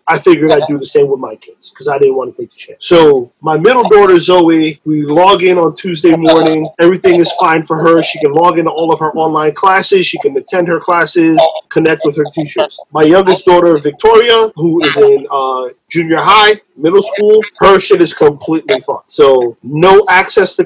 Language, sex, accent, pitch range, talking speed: English, male, American, 150-215 Hz, 210 wpm